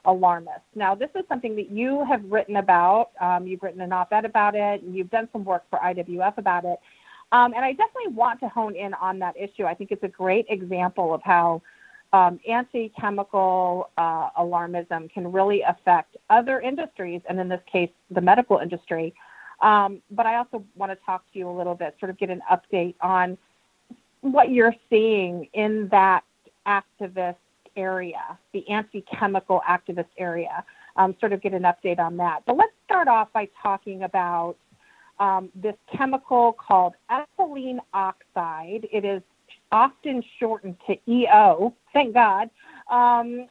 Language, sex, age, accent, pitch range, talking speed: English, female, 40-59, American, 185-235 Hz, 165 wpm